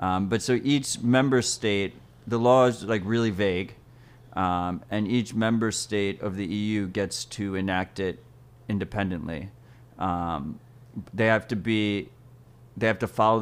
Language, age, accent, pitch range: English, 30-49, American, 90-120 Hz